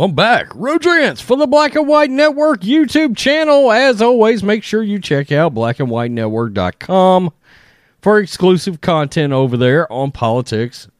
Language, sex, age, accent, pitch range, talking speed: English, male, 40-59, American, 125-195 Hz, 140 wpm